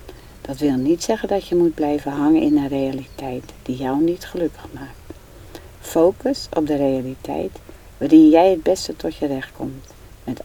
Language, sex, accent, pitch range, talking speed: Dutch, female, Dutch, 130-175 Hz, 170 wpm